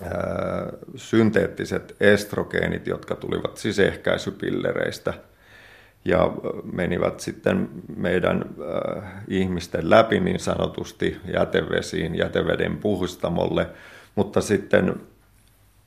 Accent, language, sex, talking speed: native, Finnish, male, 70 wpm